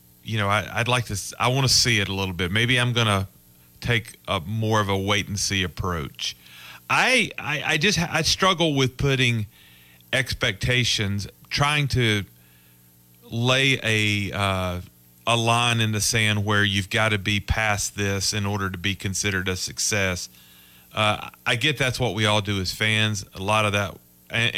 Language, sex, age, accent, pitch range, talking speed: English, male, 40-59, American, 90-120 Hz, 185 wpm